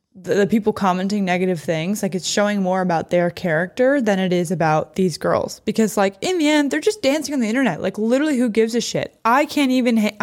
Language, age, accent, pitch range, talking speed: English, 20-39, American, 175-220 Hz, 230 wpm